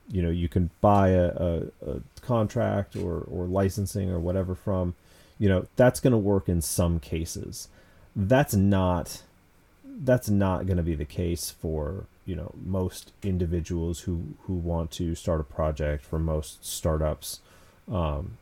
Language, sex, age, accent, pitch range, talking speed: English, male, 30-49, American, 85-100 Hz, 160 wpm